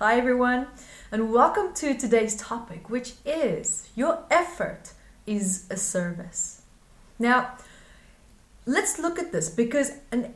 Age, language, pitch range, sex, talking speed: 30-49, English, 200-265 Hz, female, 120 wpm